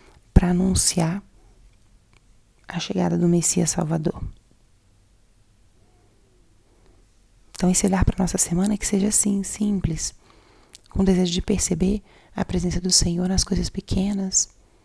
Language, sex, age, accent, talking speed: Portuguese, female, 30-49, Brazilian, 120 wpm